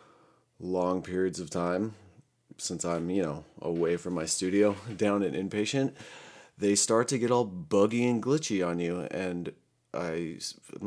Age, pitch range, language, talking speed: 30-49, 90-110 Hz, English, 155 wpm